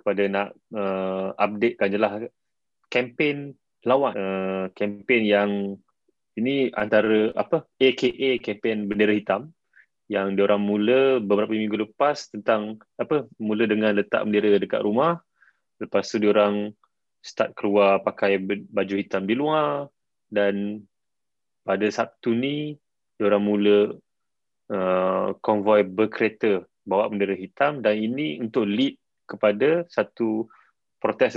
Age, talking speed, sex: 20-39, 115 wpm, male